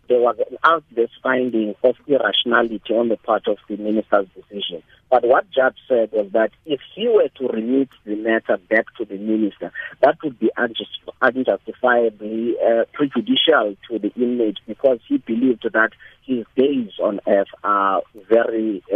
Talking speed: 155 wpm